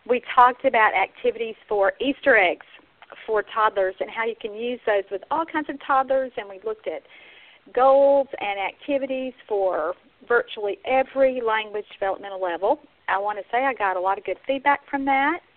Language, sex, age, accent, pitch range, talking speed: English, female, 40-59, American, 205-290 Hz, 175 wpm